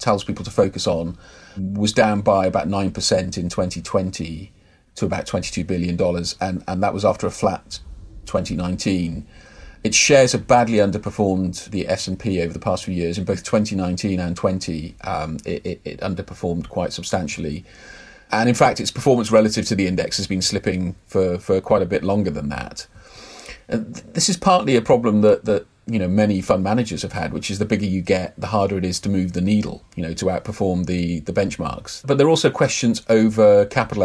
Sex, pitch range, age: male, 90-105 Hz, 40-59